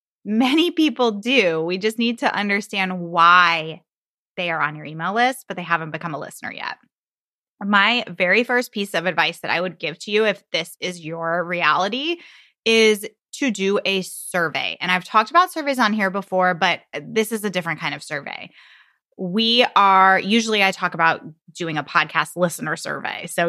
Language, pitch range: English, 180-245 Hz